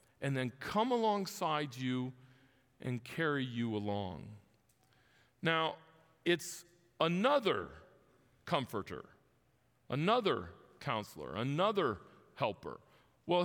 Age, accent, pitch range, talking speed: 40-59, American, 150-210 Hz, 80 wpm